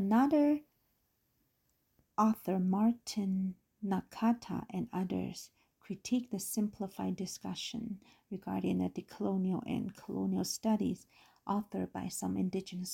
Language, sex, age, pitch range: Chinese, female, 50-69, 175-220 Hz